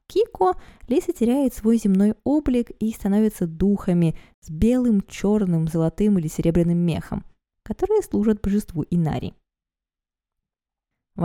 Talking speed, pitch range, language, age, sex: 110 wpm, 165-230 Hz, Russian, 20-39, female